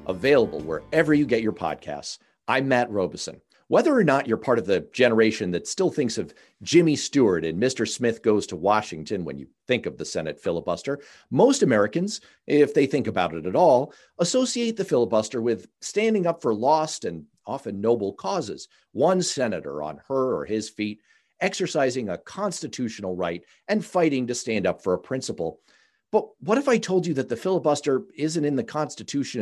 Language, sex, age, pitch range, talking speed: English, male, 50-69, 110-175 Hz, 180 wpm